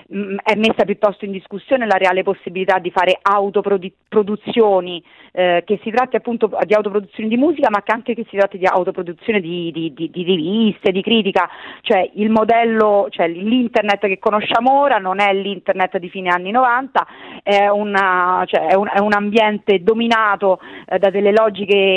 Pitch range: 190-225 Hz